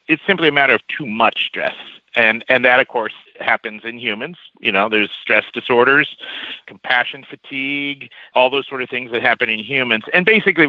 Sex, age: male, 50-69